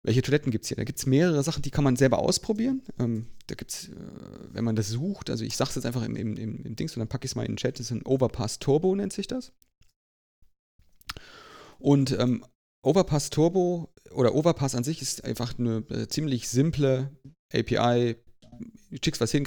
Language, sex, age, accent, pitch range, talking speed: German, male, 30-49, German, 115-135 Hz, 215 wpm